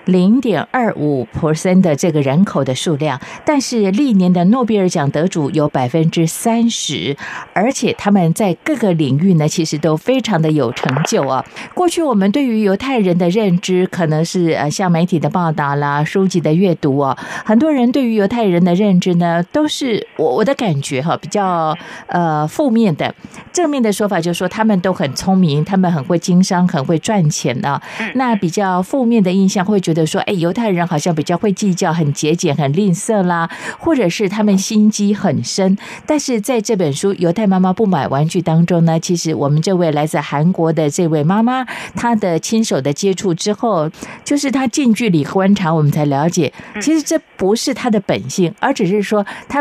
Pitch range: 165-220 Hz